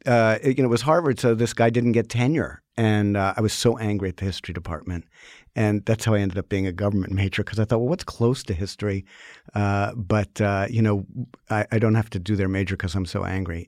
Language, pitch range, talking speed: English, 95-115 Hz, 250 wpm